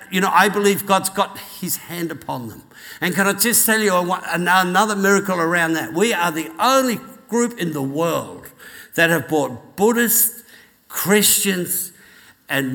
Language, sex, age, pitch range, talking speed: English, male, 60-79, 140-195 Hz, 160 wpm